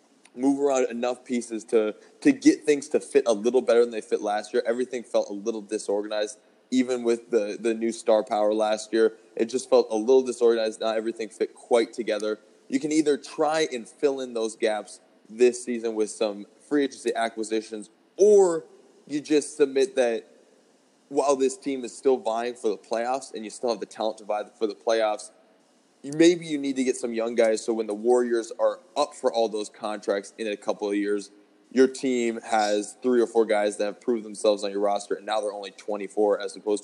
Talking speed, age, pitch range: 210 wpm, 20-39, 105-140 Hz